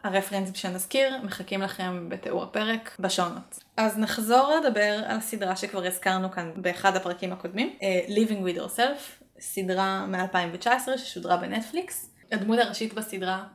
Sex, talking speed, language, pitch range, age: female, 130 wpm, Hebrew, 180-225 Hz, 20-39